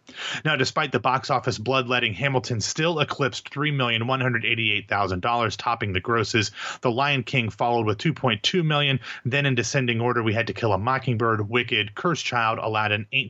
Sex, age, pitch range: male, 30-49, 115-150 Hz